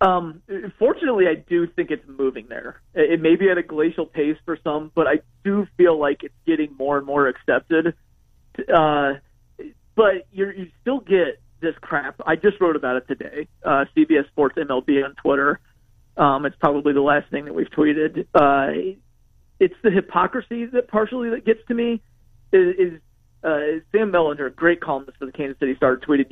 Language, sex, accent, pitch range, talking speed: English, male, American, 145-200 Hz, 185 wpm